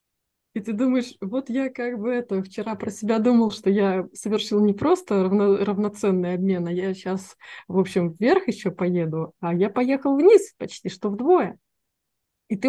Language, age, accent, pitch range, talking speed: Russian, 20-39, native, 190-240 Hz, 175 wpm